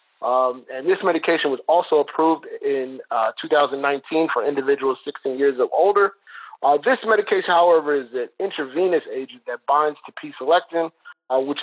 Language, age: English, 40-59